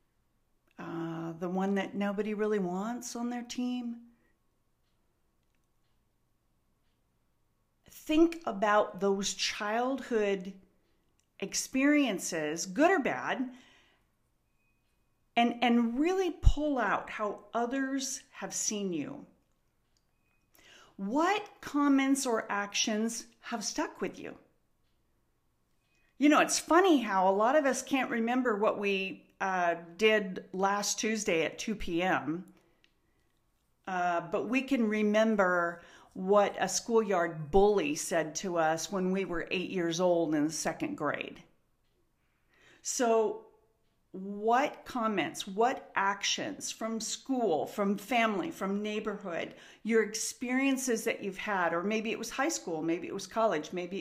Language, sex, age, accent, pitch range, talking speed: English, female, 40-59, American, 190-245 Hz, 115 wpm